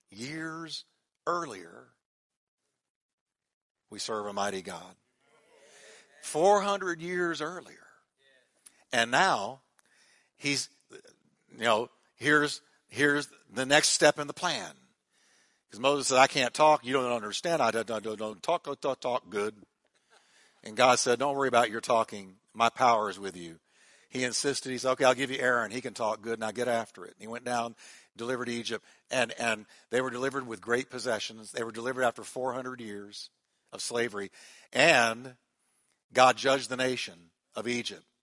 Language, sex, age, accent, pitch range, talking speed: English, male, 60-79, American, 115-155 Hz, 155 wpm